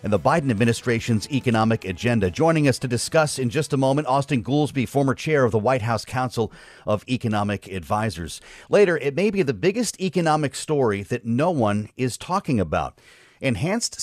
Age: 40-59